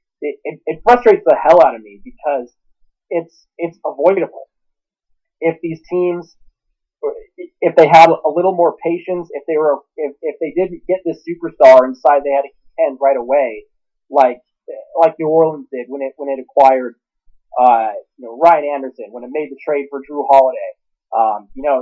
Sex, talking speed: male, 180 wpm